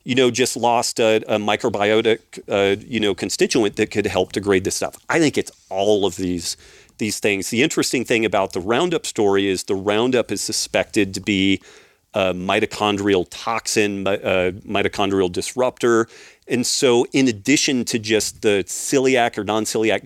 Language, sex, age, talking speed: English, male, 40-59, 165 wpm